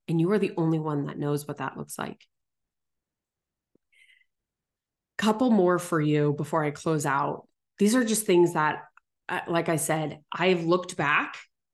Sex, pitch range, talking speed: female, 155-200 Hz, 160 wpm